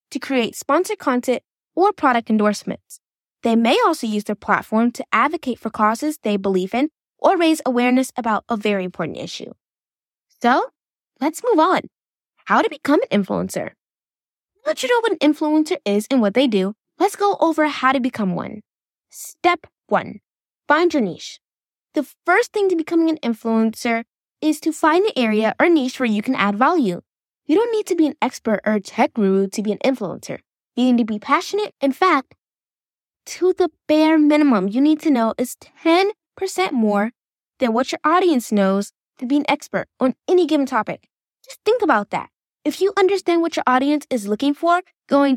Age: 10-29